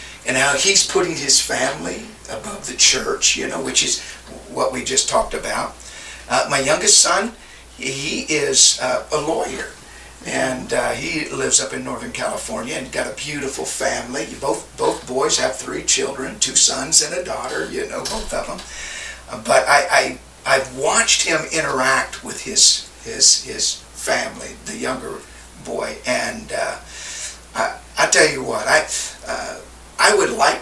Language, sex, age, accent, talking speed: English, male, 50-69, American, 165 wpm